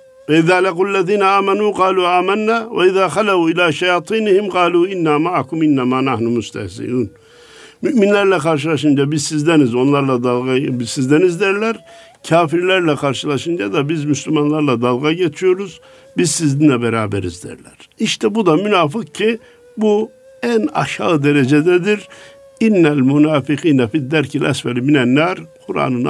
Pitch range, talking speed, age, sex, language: 145-205 Hz, 115 wpm, 60-79, male, Turkish